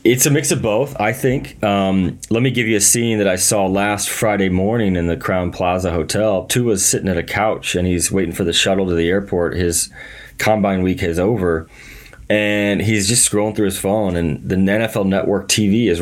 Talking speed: 215 wpm